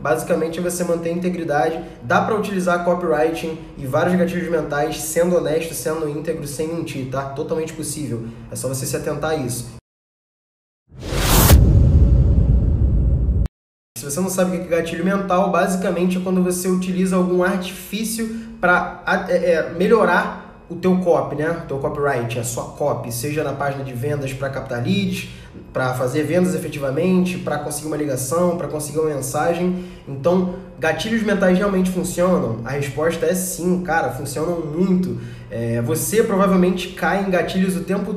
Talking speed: 155 wpm